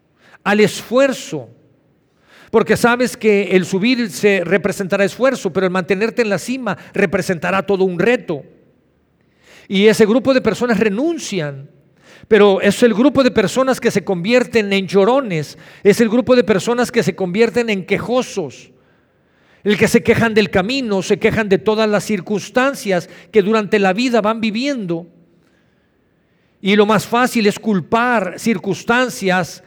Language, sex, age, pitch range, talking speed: Spanish, male, 50-69, 180-230 Hz, 145 wpm